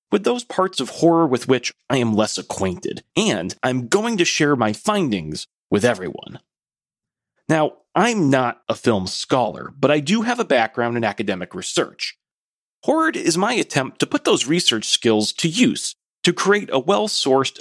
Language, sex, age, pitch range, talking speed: English, male, 30-49, 110-180 Hz, 175 wpm